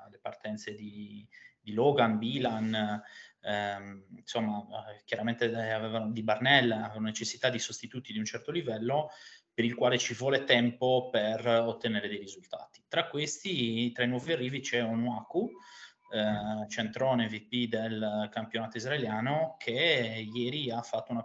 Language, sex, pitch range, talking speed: Italian, male, 105-120 Hz, 130 wpm